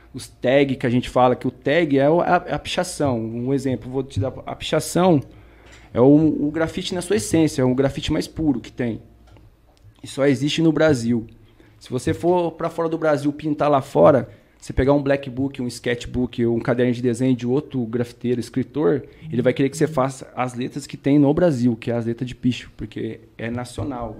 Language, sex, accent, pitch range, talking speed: Portuguese, male, Brazilian, 115-140 Hz, 210 wpm